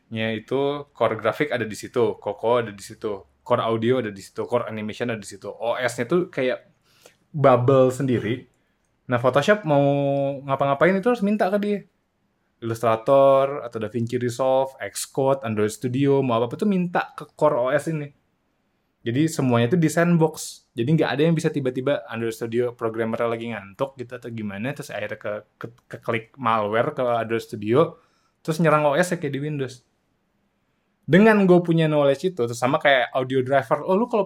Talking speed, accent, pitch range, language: 175 wpm, native, 120-155 Hz, Indonesian